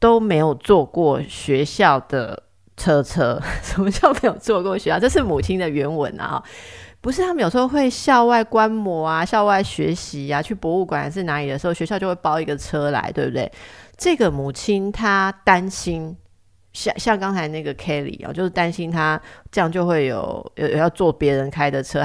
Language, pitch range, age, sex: Chinese, 140-180 Hz, 30-49, female